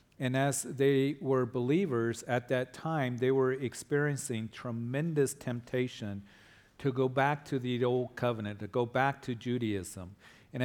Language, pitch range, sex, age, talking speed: English, 110-130 Hz, male, 40-59, 145 wpm